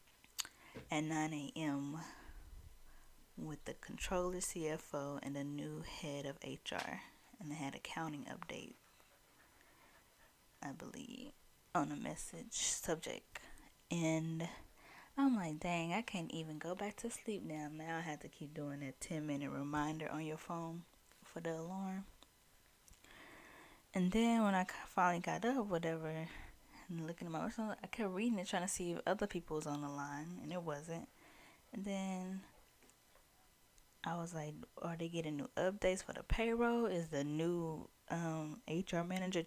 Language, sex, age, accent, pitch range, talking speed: English, female, 10-29, American, 160-220 Hz, 155 wpm